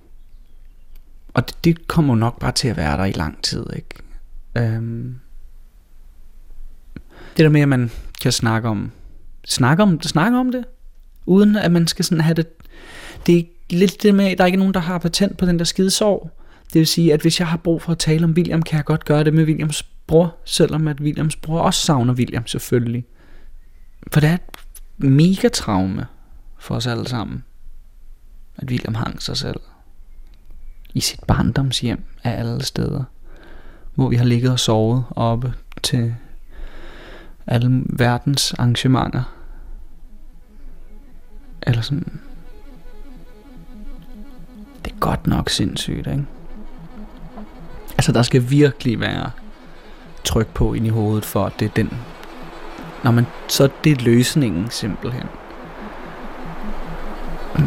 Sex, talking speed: male, 155 wpm